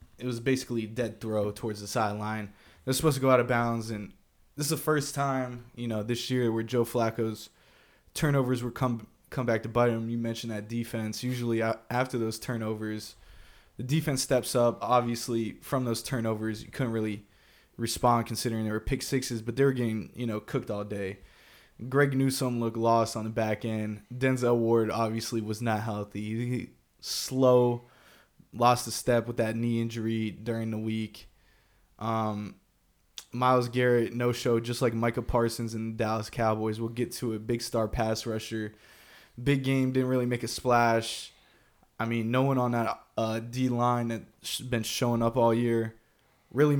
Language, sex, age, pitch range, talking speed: English, male, 20-39, 110-125 Hz, 180 wpm